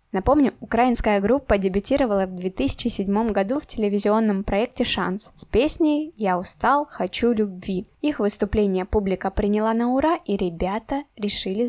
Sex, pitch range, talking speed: female, 195-245 Hz, 135 wpm